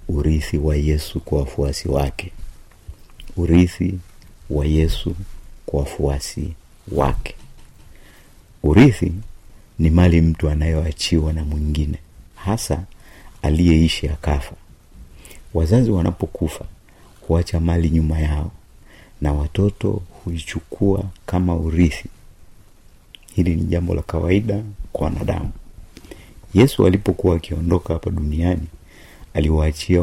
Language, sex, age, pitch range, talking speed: Swahili, male, 50-69, 75-95 Hz, 90 wpm